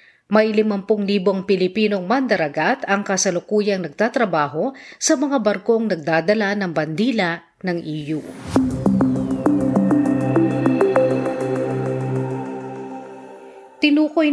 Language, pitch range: Filipino, 165-220 Hz